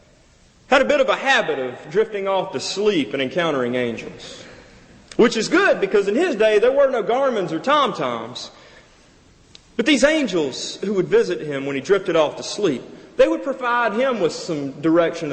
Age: 40-59